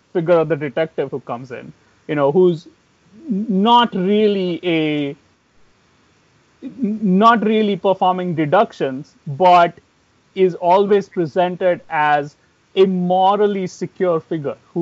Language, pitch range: English, 145-200 Hz